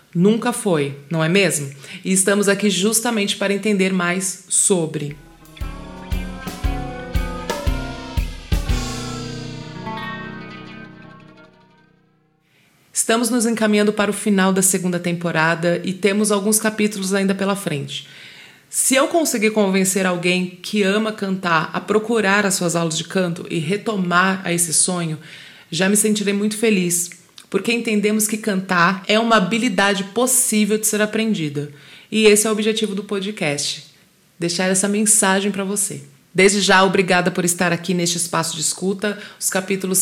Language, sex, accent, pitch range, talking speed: Portuguese, female, Brazilian, 170-210 Hz, 135 wpm